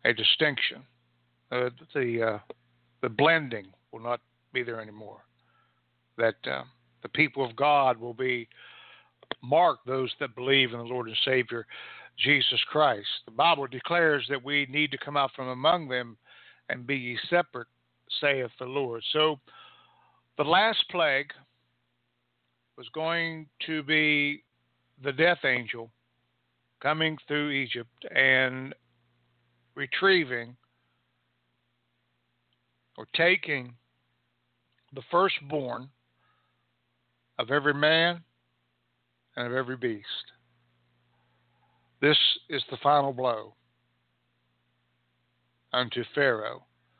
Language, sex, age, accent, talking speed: English, male, 60-79, American, 105 wpm